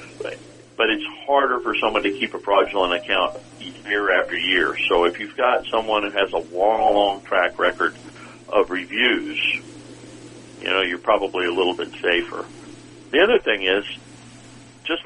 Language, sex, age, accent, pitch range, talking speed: English, male, 50-69, American, 110-140 Hz, 160 wpm